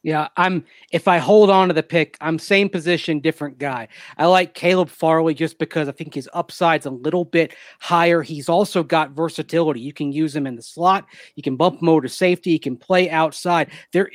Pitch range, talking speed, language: 150-180 Hz, 210 wpm, English